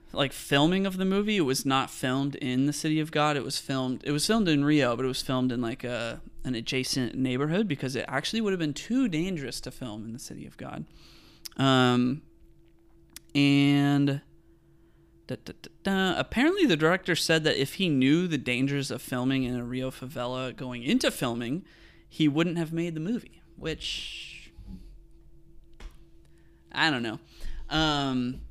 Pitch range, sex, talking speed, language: 125-155 Hz, male, 175 wpm, English